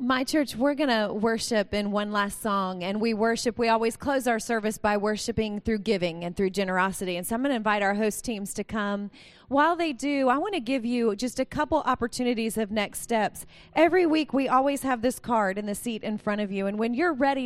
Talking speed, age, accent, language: 235 wpm, 30-49, American, English